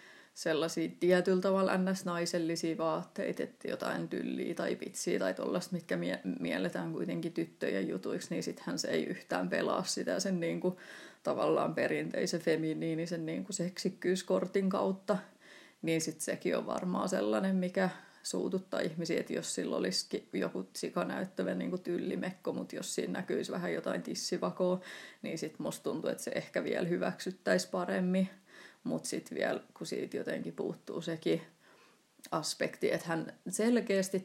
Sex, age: female, 30-49